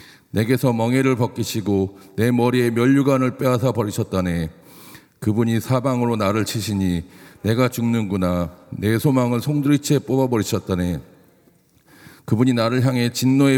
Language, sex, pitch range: Korean, male, 100-125 Hz